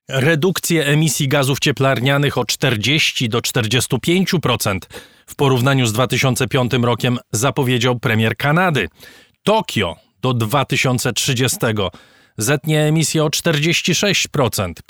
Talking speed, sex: 95 wpm, male